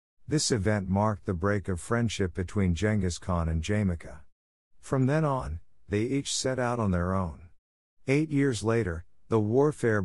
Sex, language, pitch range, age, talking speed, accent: male, German, 85-115 Hz, 50-69, 160 wpm, American